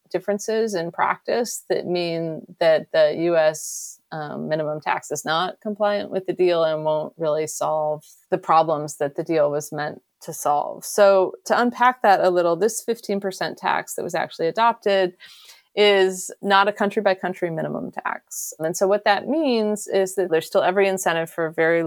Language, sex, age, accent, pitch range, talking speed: English, female, 30-49, American, 160-200 Hz, 175 wpm